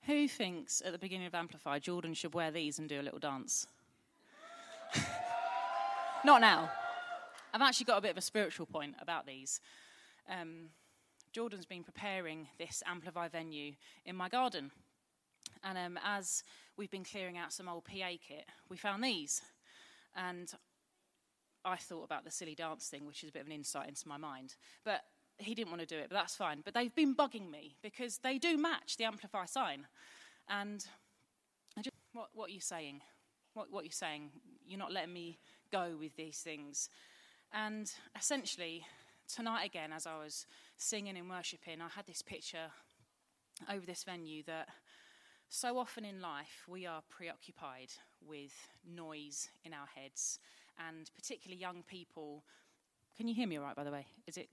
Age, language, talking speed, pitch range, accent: 30-49, English, 170 wpm, 160-215 Hz, British